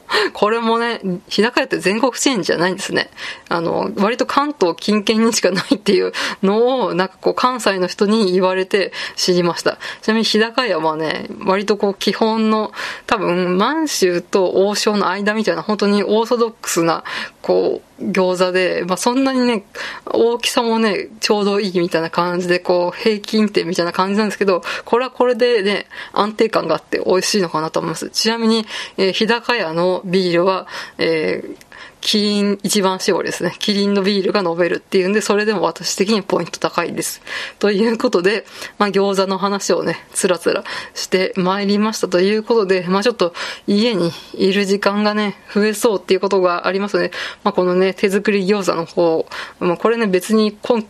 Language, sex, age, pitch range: Japanese, female, 20-39, 185-225 Hz